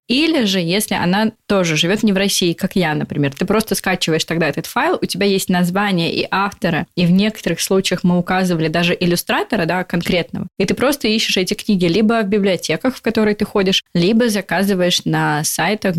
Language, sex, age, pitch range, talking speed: Russian, female, 20-39, 165-200 Hz, 190 wpm